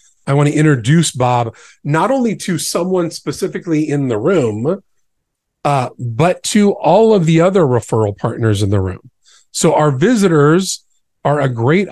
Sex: male